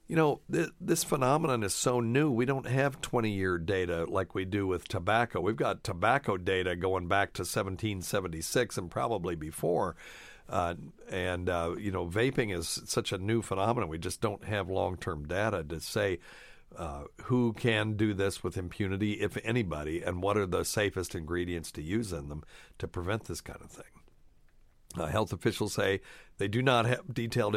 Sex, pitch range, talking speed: male, 90-115 Hz, 175 wpm